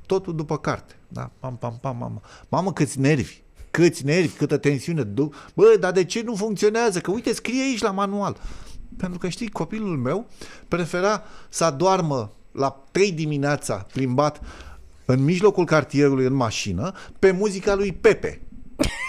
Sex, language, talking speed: male, Romanian, 155 wpm